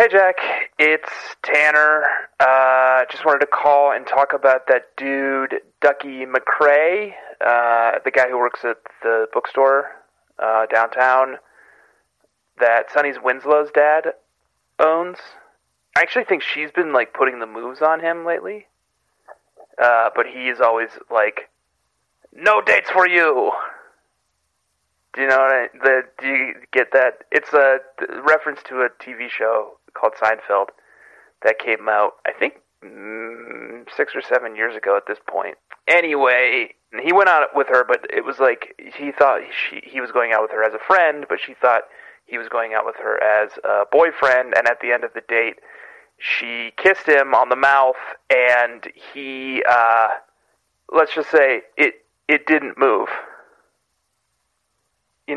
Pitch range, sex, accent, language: 120-150 Hz, male, American, English